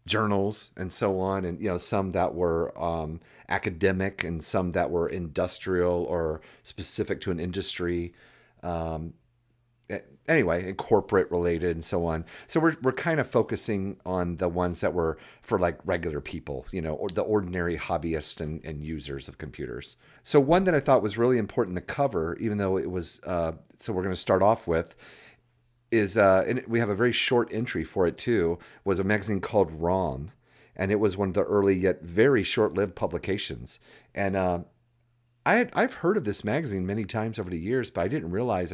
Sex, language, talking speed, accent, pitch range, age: male, English, 190 wpm, American, 85-115 Hz, 40-59